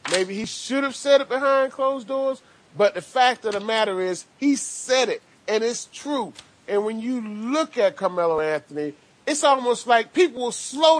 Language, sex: English, male